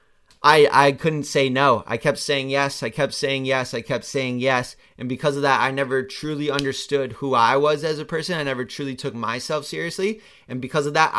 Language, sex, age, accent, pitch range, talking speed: English, male, 20-39, American, 125-145 Hz, 220 wpm